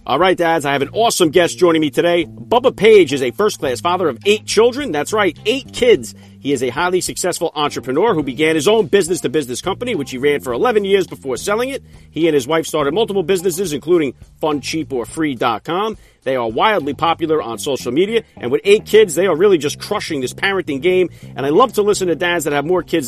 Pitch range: 150-195 Hz